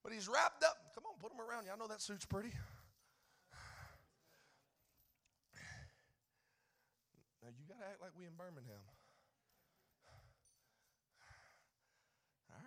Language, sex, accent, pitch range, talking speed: English, male, American, 150-215 Hz, 110 wpm